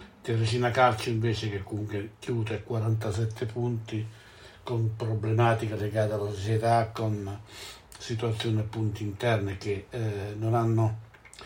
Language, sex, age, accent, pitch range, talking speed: Italian, male, 60-79, native, 105-115 Hz, 115 wpm